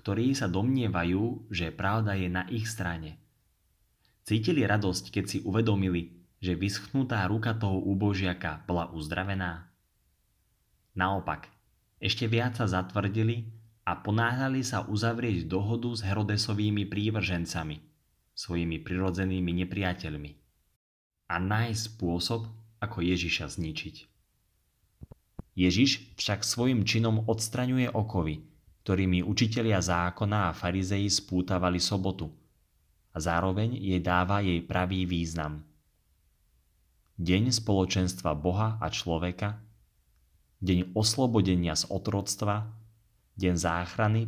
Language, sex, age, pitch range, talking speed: Slovak, male, 20-39, 85-110 Hz, 100 wpm